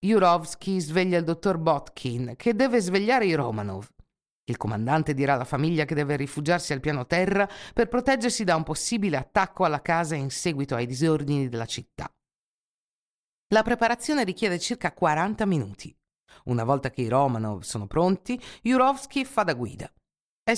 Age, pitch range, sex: 50-69, 140-200 Hz, female